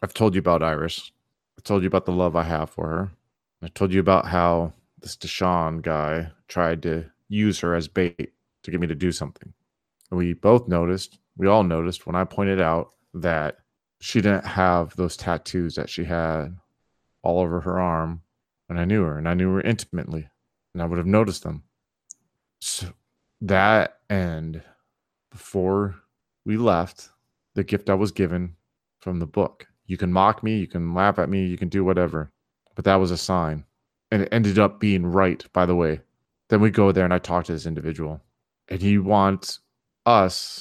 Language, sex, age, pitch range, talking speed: English, male, 30-49, 85-100 Hz, 190 wpm